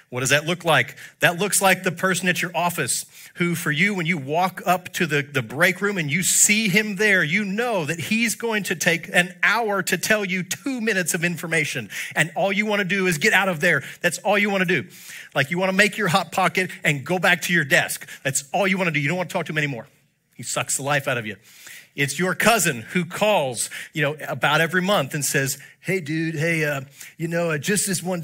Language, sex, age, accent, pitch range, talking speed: English, male, 40-59, American, 145-185 Hz, 255 wpm